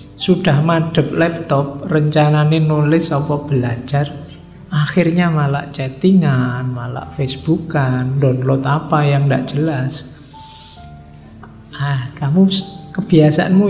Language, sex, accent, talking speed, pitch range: Indonesian, male, native, 90 wpm, 140-165 Hz